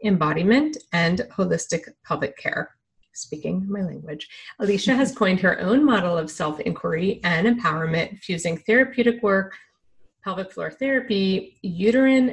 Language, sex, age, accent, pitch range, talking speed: English, female, 30-49, American, 170-220 Hz, 125 wpm